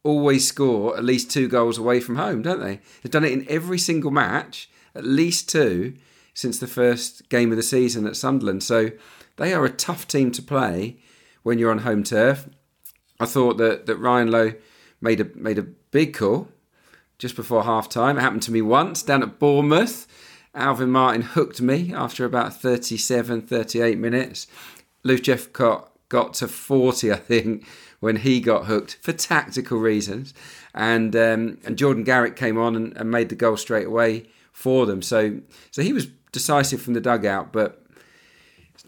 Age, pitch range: 40-59, 110-130 Hz